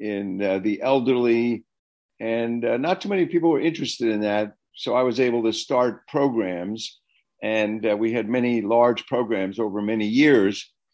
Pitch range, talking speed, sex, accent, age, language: 110-135 Hz, 170 wpm, male, American, 60-79, English